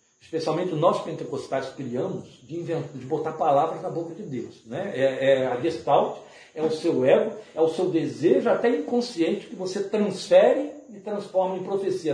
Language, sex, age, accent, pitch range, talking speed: Portuguese, male, 60-79, Brazilian, 135-210 Hz, 175 wpm